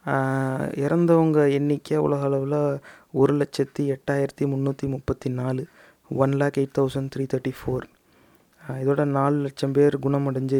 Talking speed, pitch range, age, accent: 125 wpm, 135-145 Hz, 30-49, native